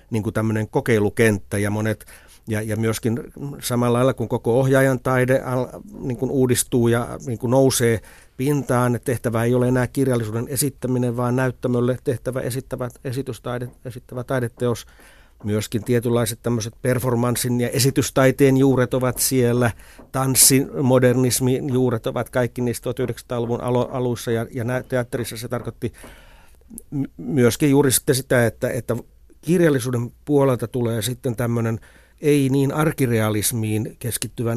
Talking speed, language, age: 115 wpm, Finnish, 50-69